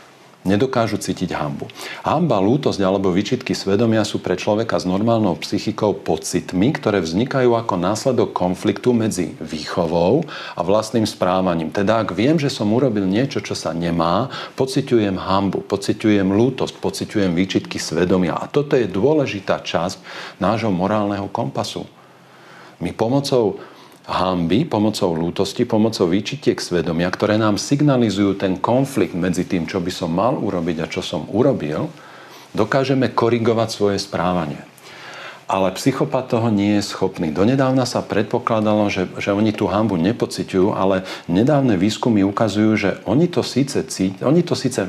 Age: 40-59